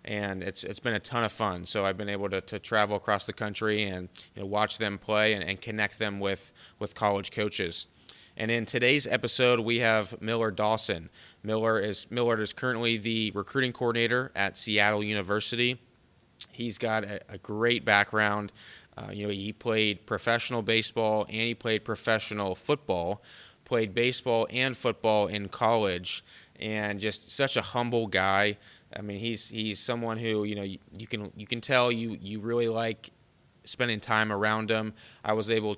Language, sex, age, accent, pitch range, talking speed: English, male, 20-39, American, 105-115 Hz, 180 wpm